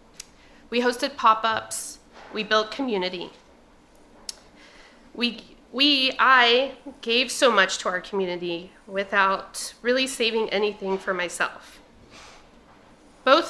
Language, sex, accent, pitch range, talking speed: English, female, American, 195-240 Hz, 100 wpm